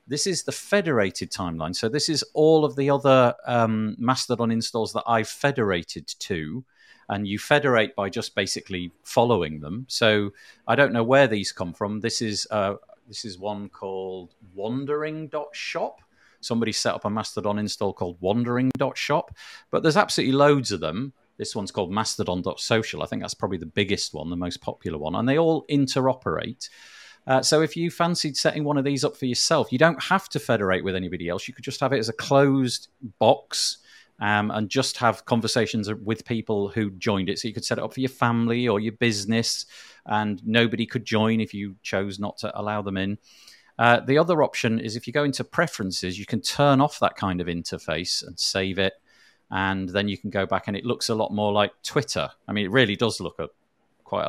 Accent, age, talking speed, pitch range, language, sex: British, 40-59, 200 wpm, 100-135 Hz, English, male